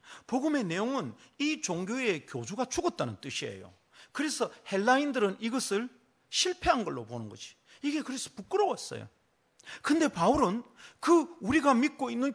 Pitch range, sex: 170-280 Hz, male